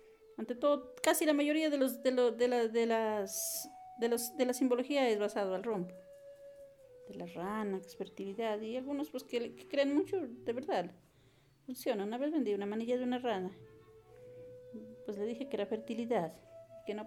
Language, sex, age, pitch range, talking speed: English, female, 40-59, 220-280 Hz, 185 wpm